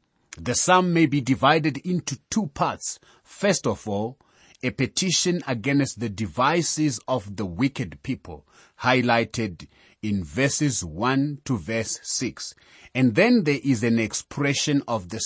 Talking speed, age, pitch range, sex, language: 140 wpm, 30-49, 105-145 Hz, male, English